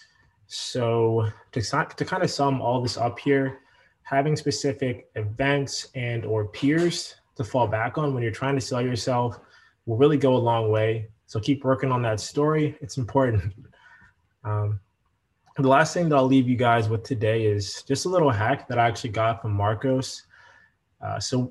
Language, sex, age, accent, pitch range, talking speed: English, male, 20-39, American, 110-135 Hz, 180 wpm